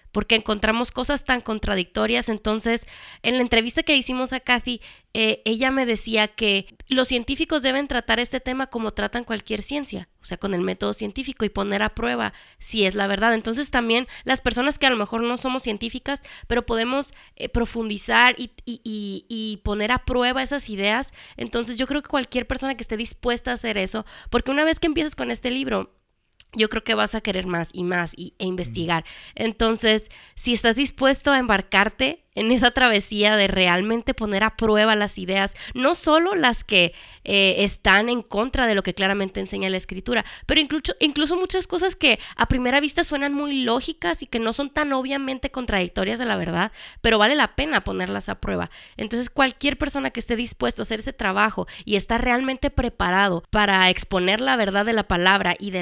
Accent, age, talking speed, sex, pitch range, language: Mexican, 20-39, 190 wpm, female, 205-265 Hz, Spanish